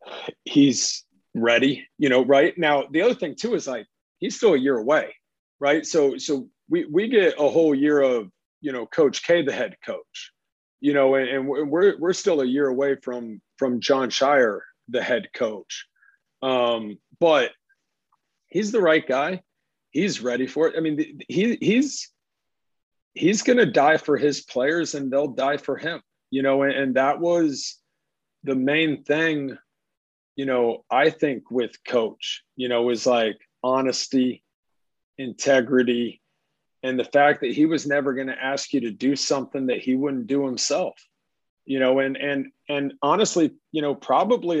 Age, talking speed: 40-59, 170 wpm